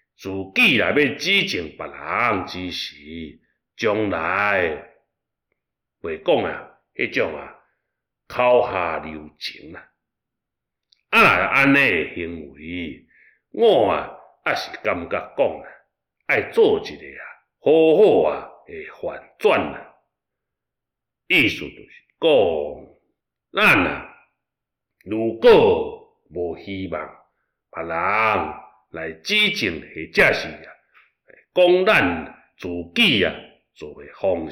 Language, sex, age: Chinese, male, 60-79